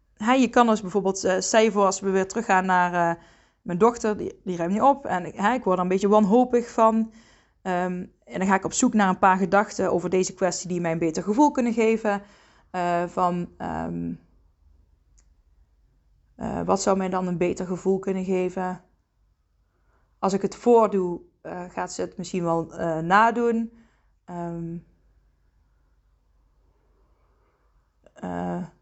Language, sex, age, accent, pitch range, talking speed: Dutch, female, 20-39, Dutch, 175-210 Hz, 160 wpm